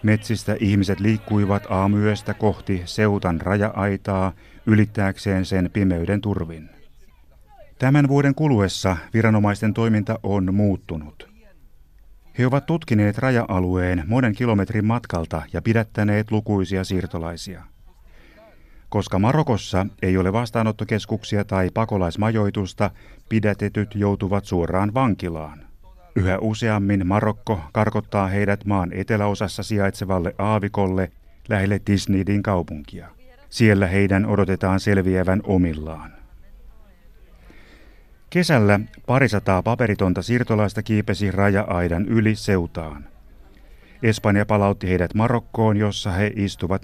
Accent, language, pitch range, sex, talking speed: native, Finnish, 95-110 Hz, male, 95 wpm